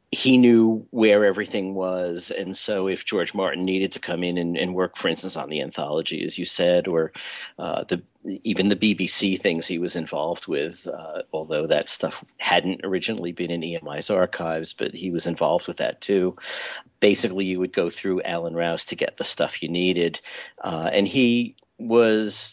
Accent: American